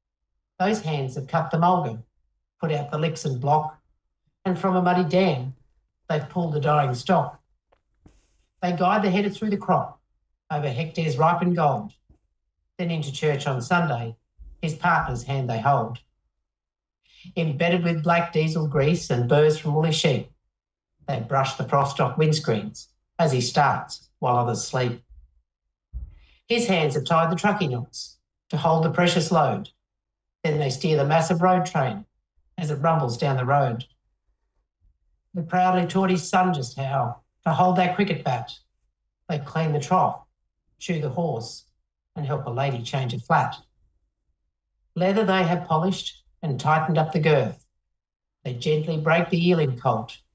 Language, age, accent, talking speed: English, 50-69, Australian, 155 wpm